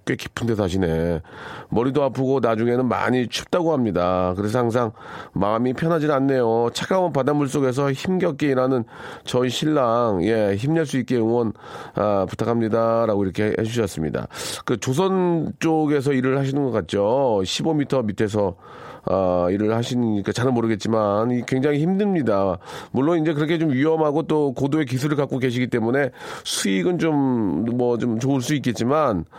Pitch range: 110-145 Hz